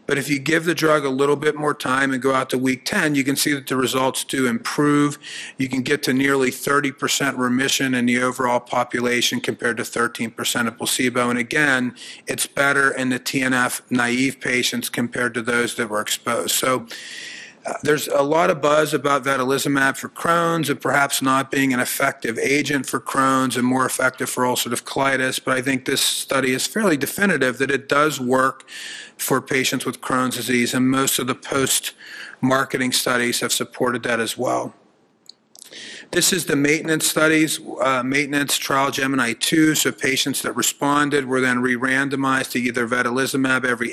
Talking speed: 175 wpm